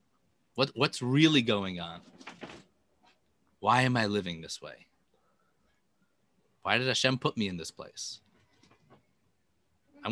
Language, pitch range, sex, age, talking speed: English, 105-140 Hz, male, 30-49, 120 wpm